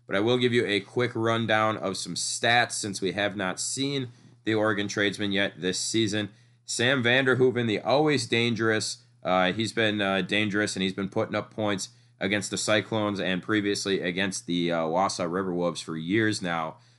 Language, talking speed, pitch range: English, 185 wpm, 95-120 Hz